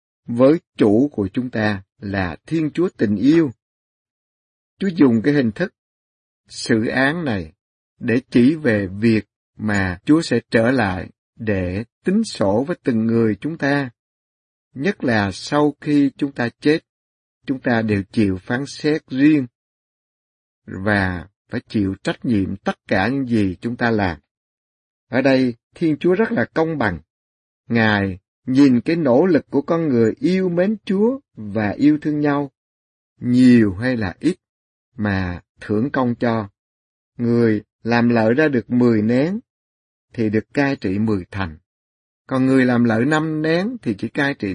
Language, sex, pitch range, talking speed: Vietnamese, male, 100-140 Hz, 155 wpm